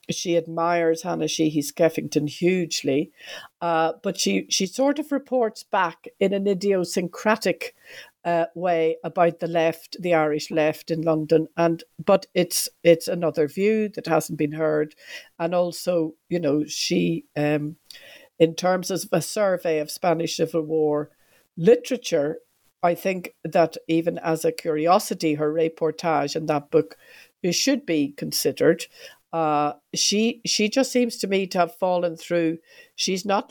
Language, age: English, 50-69